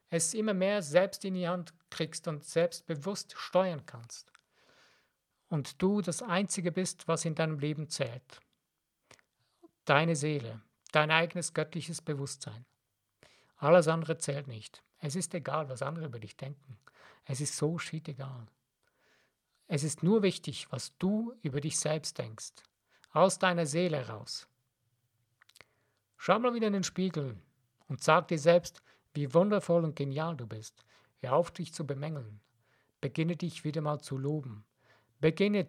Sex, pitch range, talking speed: male, 135-170 Hz, 145 wpm